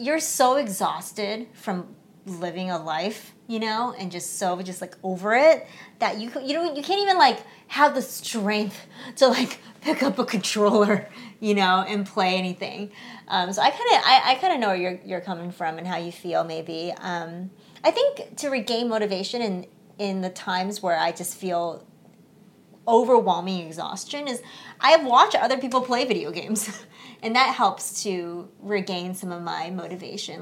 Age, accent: 30-49, American